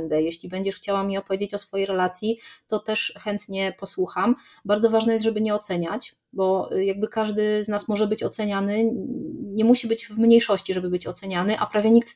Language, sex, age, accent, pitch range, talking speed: Polish, female, 30-49, native, 190-225 Hz, 185 wpm